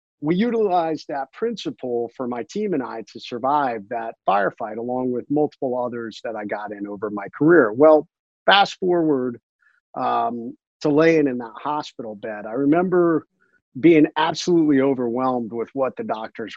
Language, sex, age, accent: English, male, 50-69, American